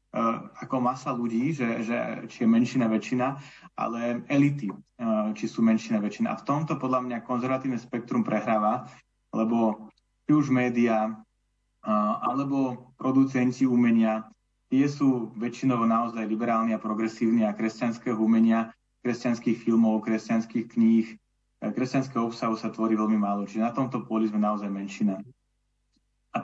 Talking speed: 140 wpm